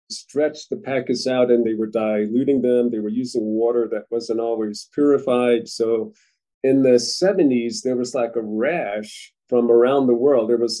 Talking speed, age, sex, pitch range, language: 180 wpm, 40-59, male, 115-140 Hz, English